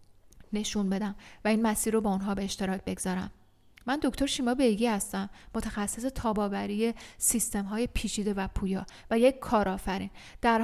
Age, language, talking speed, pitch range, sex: 10-29, Persian, 150 wpm, 200-245 Hz, female